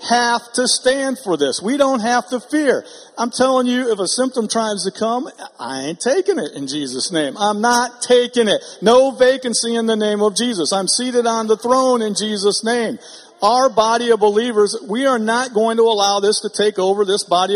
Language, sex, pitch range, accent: English, male, 195-245 Hz, American